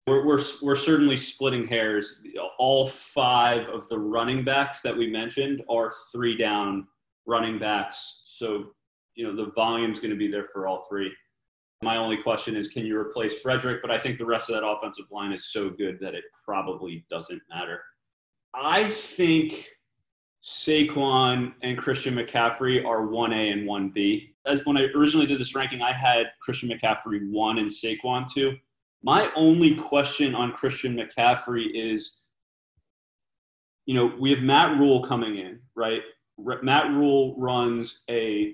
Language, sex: English, male